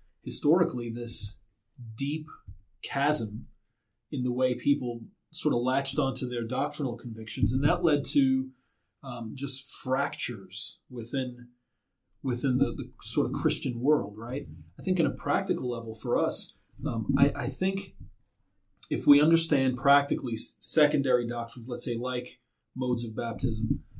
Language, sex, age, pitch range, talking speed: English, male, 30-49, 115-145 Hz, 140 wpm